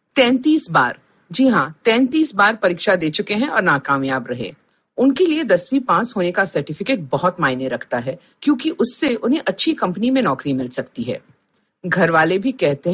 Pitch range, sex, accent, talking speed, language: 160-260 Hz, female, native, 110 wpm, Hindi